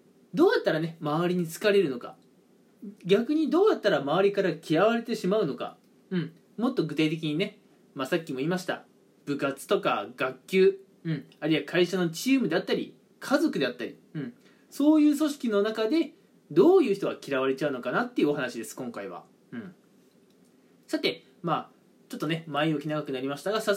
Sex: male